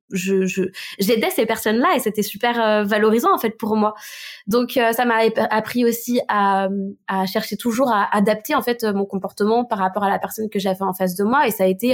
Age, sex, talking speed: 20-39, female, 225 wpm